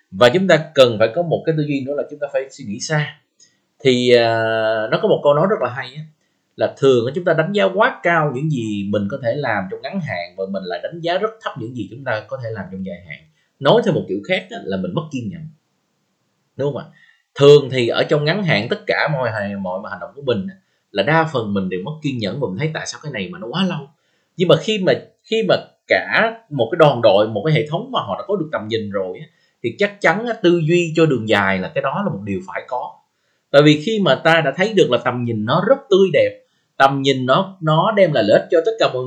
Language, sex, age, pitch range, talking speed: Vietnamese, male, 20-39, 120-180 Hz, 260 wpm